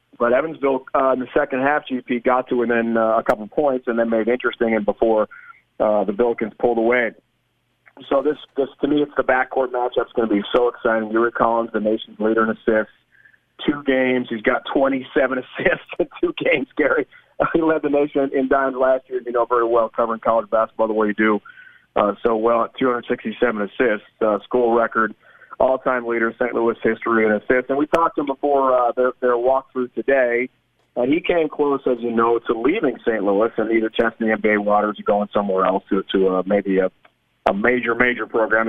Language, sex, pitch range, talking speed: English, male, 110-135 Hz, 210 wpm